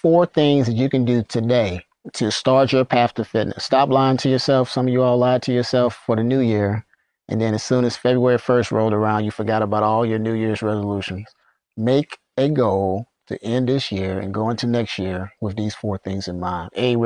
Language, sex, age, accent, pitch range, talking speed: English, male, 30-49, American, 100-120 Hz, 230 wpm